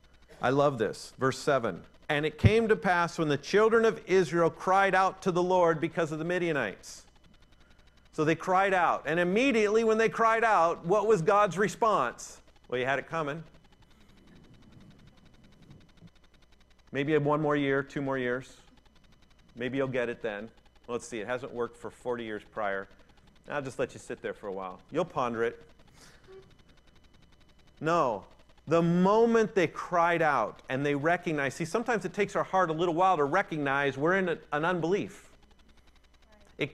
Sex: male